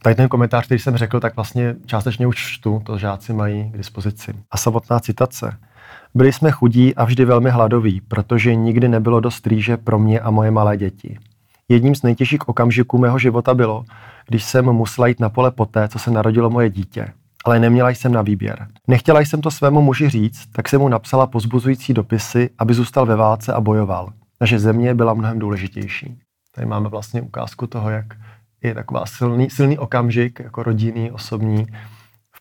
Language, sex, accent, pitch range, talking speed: Czech, male, native, 110-125 Hz, 185 wpm